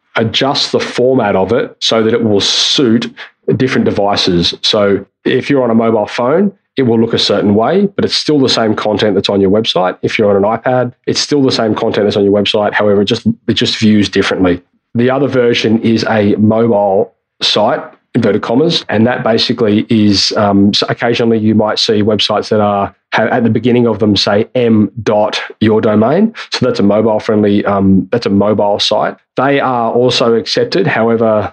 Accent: Australian